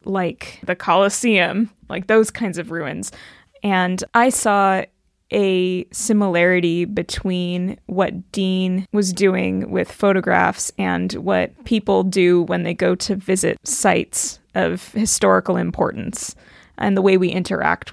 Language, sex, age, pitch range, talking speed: English, female, 20-39, 185-215 Hz, 125 wpm